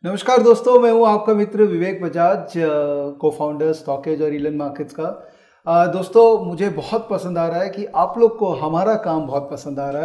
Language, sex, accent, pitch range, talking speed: English, male, Indian, 150-185 Hz, 195 wpm